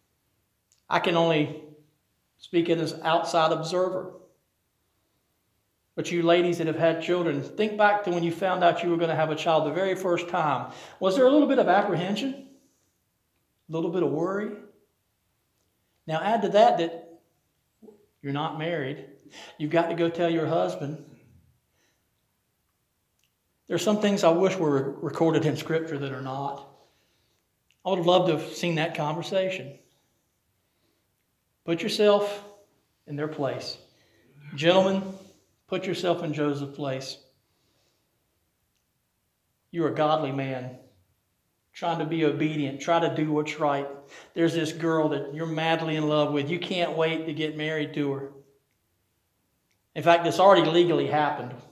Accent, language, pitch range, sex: American, English, 145-175 Hz, male